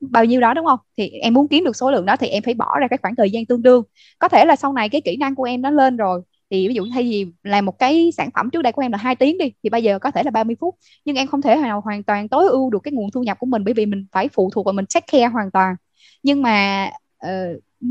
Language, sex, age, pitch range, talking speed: Vietnamese, female, 10-29, 210-280 Hz, 315 wpm